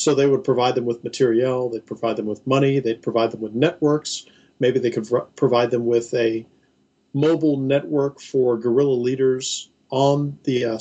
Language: English